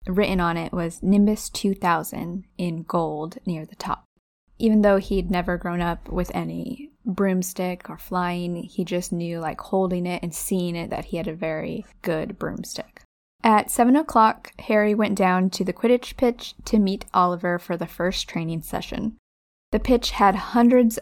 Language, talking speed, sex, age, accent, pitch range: English, 170 wpm, female, 10-29, American, 175-215 Hz